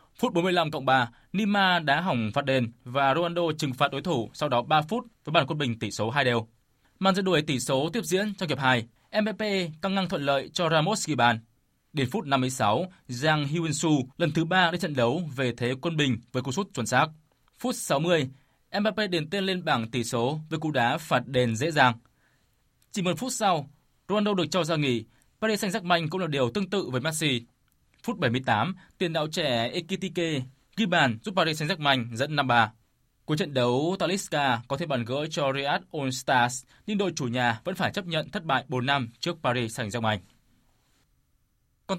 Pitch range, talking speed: 125-180 Hz, 205 wpm